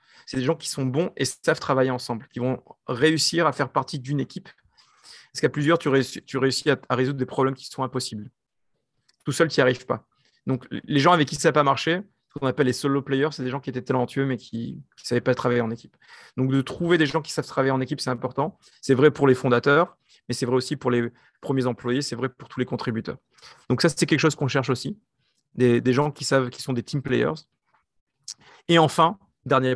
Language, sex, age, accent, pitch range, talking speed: French, male, 40-59, French, 125-145 Hz, 235 wpm